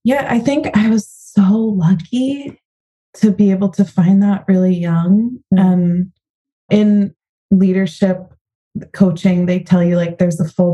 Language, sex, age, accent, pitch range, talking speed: Dutch, female, 20-39, American, 170-195 Hz, 145 wpm